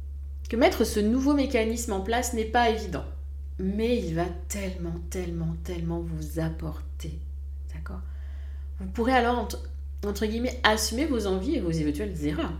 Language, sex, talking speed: French, female, 150 wpm